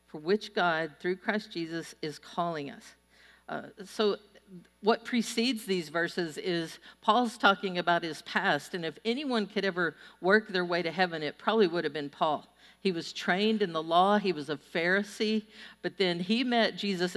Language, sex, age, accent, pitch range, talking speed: English, female, 50-69, American, 165-210 Hz, 180 wpm